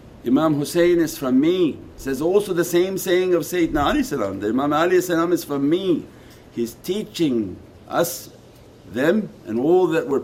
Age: 60-79